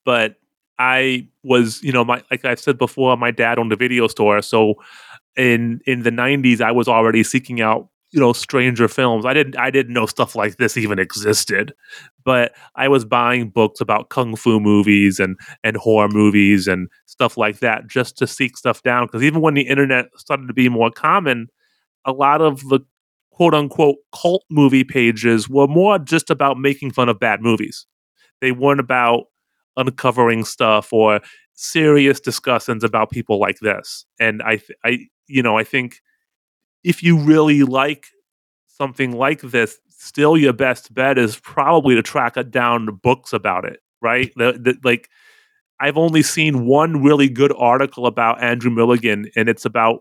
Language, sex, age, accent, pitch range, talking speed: English, male, 30-49, American, 115-140 Hz, 170 wpm